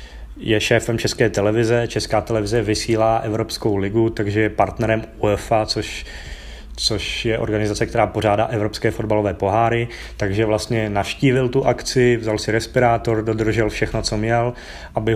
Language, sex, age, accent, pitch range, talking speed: Czech, male, 20-39, native, 100-115 Hz, 140 wpm